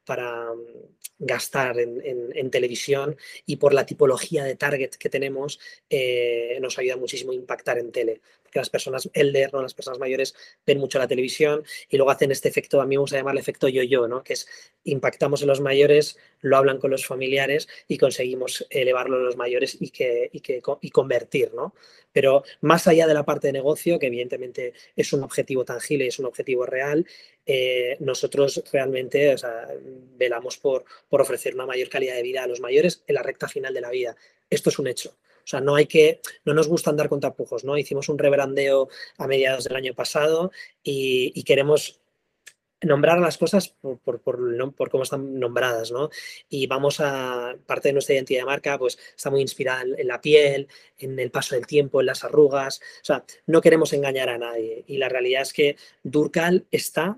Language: Spanish